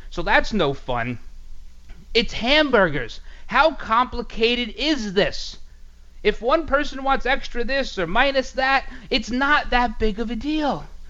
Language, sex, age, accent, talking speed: English, male, 30-49, American, 140 wpm